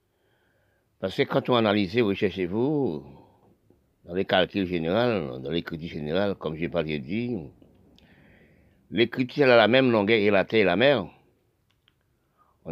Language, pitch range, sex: French, 95-130 Hz, male